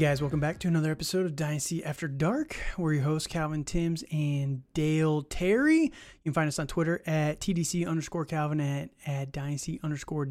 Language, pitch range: English, 145-170 Hz